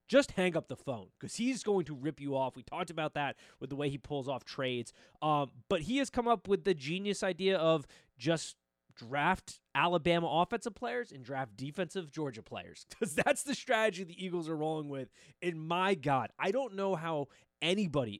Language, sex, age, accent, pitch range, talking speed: English, male, 20-39, American, 125-170 Hz, 200 wpm